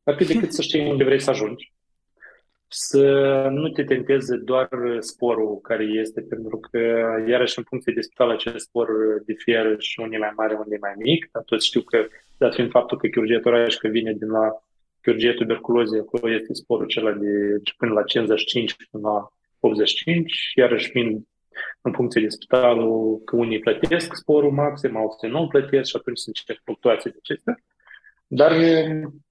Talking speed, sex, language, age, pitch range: 170 wpm, male, Romanian, 20-39, 110-135 Hz